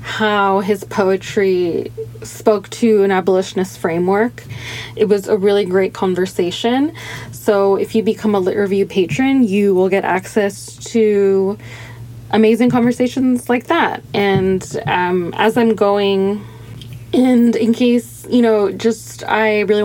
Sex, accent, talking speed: female, American, 135 wpm